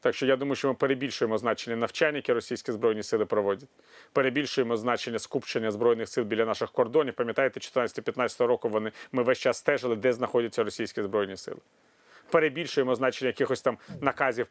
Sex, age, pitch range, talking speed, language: male, 40-59, 120-170 Hz, 165 wpm, Ukrainian